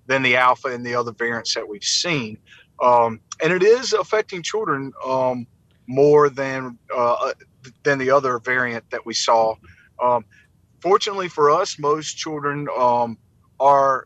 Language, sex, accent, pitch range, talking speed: English, male, American, 115-145 Hz, 150 wpm